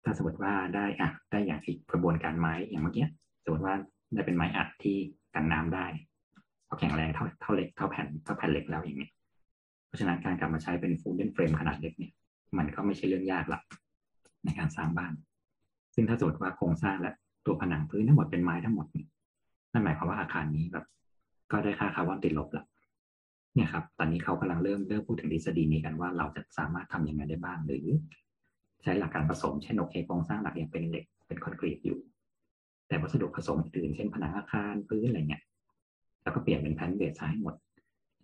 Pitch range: 80-95 Hz